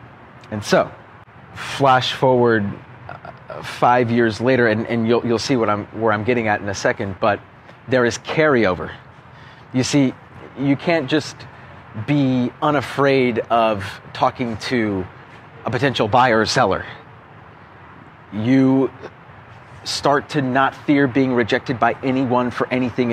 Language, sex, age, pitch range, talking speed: English, male, 30-49, 110-130 Hz, 130 wpm